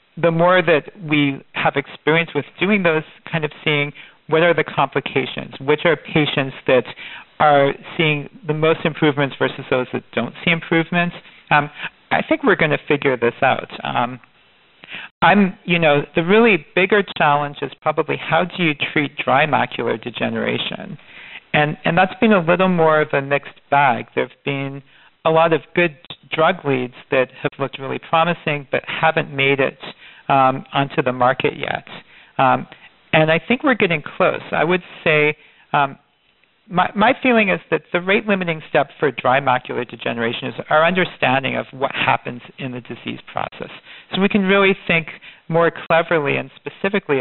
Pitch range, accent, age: 140-180 Hz, American, 50-69